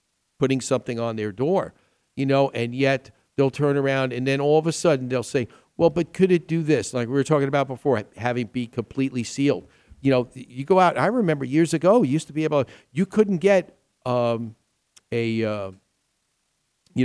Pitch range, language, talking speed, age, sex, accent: 115-145 Hz, English, 205 wpm, 50-69, male, American